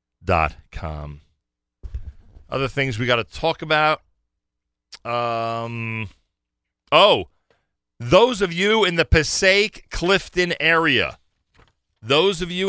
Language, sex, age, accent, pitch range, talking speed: English, male, 40-59, American, 95-150 Hz, 90 wpm